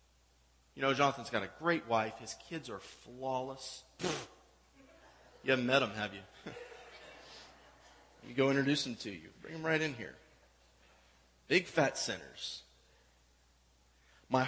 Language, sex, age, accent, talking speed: English, male, 30-49, American, 135 wpm